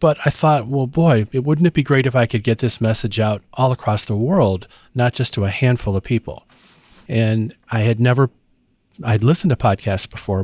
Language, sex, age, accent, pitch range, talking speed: English, male, 40-59, American, 110-135 Hz, 205 wpm